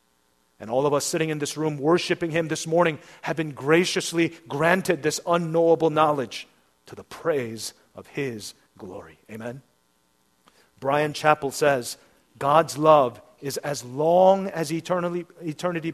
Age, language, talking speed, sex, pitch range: 40-59, English, 140 wpm, male, 135-180 Hz